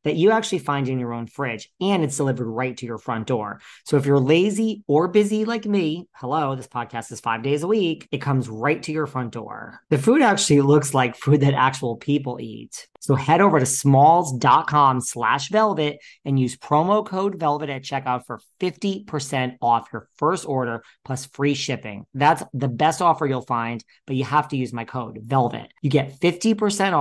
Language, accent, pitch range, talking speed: English, American, 125-155 Hz, 200 wpm